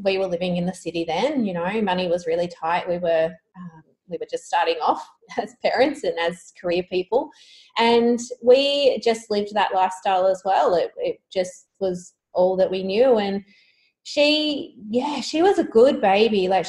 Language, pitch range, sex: English, 185-235 Hz, female